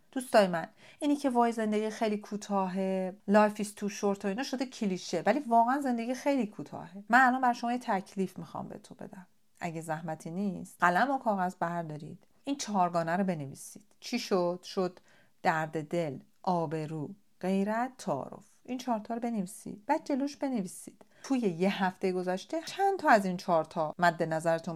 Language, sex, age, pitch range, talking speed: Persian, female, 40-59, 170-235 Hz, 170 wpm